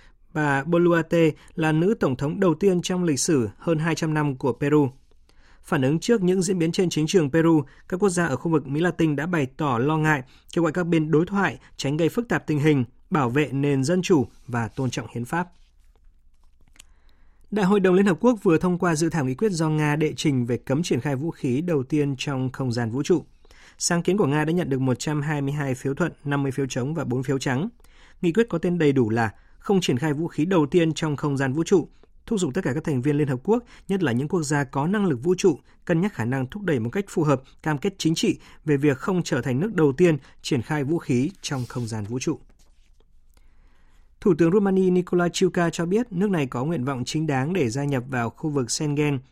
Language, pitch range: Vietnamese, 130-170 Hz